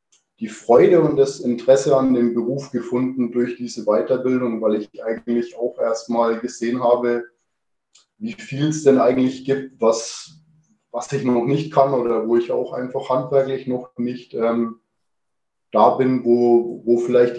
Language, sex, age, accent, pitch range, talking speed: German, male, 20-39, German, 115-130 Hz, 155 wpm